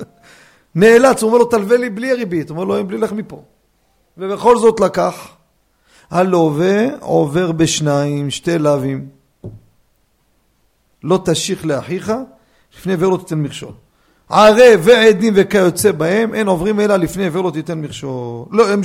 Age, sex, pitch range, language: 40-59, male, 160-220 Hz, Hebrew